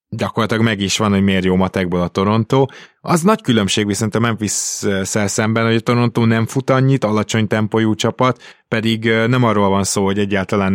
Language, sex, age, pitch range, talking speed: Hungarian, male, 20-39, 95-110 Hz, 190 wpm